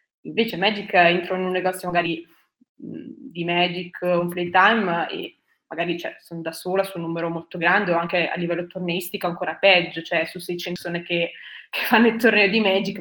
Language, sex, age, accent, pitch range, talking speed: Italian, female, 20-39, native, 170-205 Hz, 190 wpm